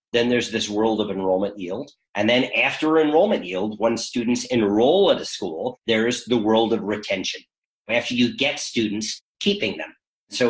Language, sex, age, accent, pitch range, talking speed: English, male, 40-59, American, 110-145 Hz, 170 wpm